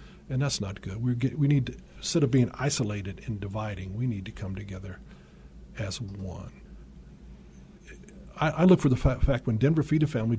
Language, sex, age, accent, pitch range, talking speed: English, male, 50-69, American, 105-130 Hz, 185 wpm